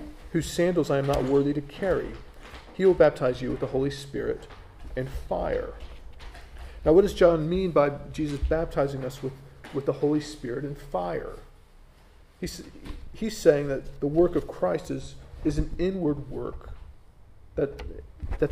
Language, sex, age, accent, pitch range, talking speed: English, male, 40-59, American, 135-160 Hz, 160 wpm